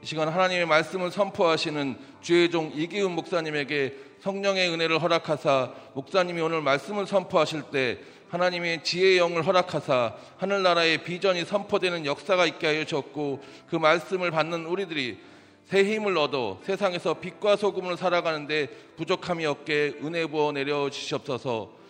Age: 40-59